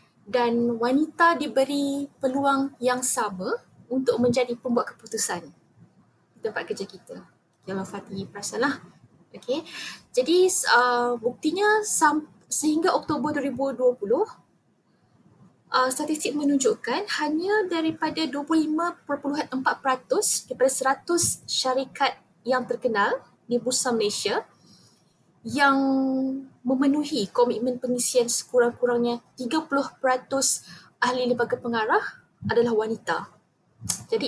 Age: 20-39